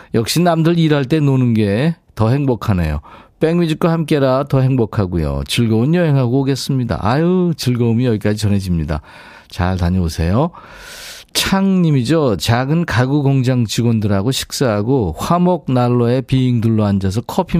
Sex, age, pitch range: male, 40-59, 105-150 Hz